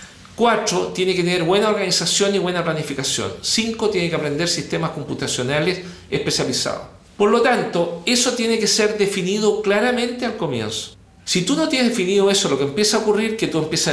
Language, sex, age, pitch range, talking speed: Spanish, male, 50-69, 150-210 Hz, 180 wpm